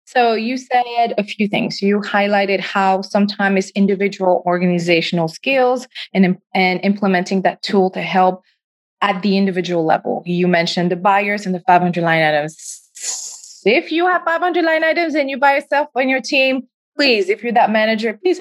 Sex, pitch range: female, 180-225 Hz